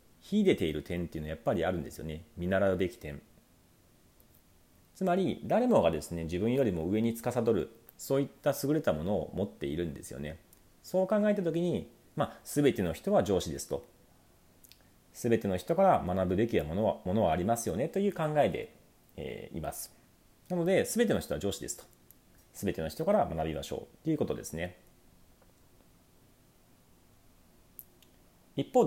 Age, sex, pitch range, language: 40-59, male, 85-135 Hz, Japanese